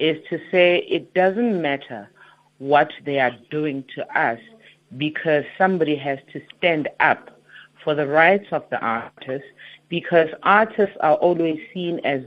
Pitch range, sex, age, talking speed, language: 150-195 Hz, female, 50-69, 145 wpm, English